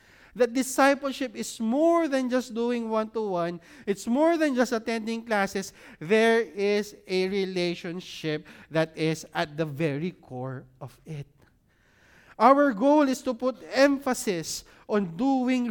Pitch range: 175-245 Hz